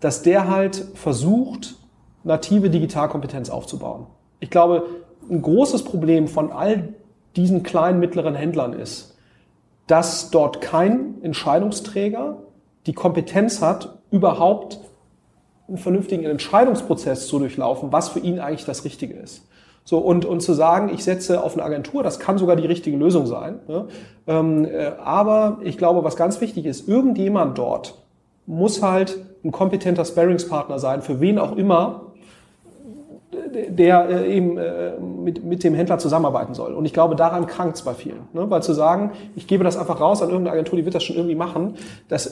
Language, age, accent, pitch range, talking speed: German, 40-59, German, 160-190 Hz, 155 wpm